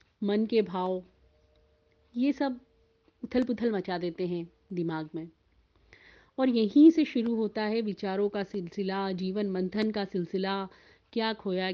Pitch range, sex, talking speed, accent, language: 175-230 Hz, female, 140 wpm, native, Hindi